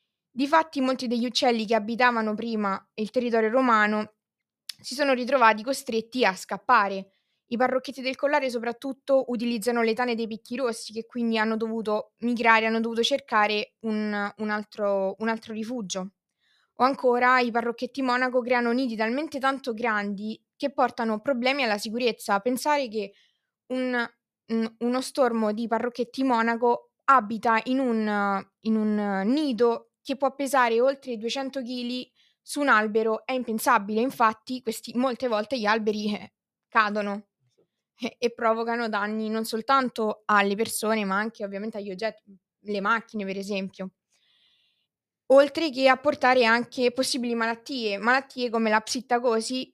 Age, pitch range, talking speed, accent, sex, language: 20-39, 215-255 Hz, 135 wpm, native, female, Italian